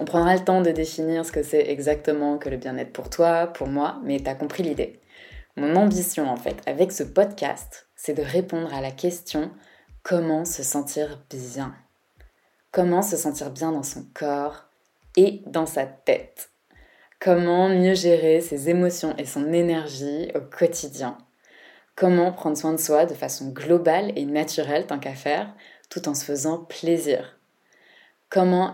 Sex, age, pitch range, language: female, 20-39, 145-175 Hz, French